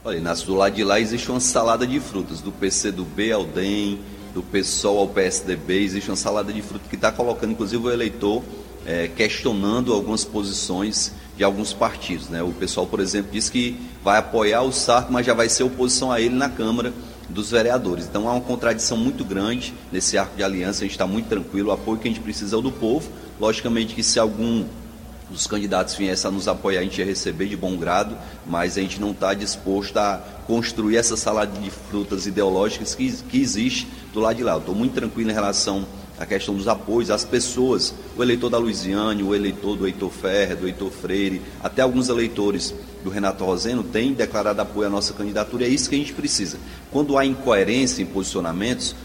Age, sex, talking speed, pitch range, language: 30-49, male, 205 wpm, 100-120 Hz, Portuguese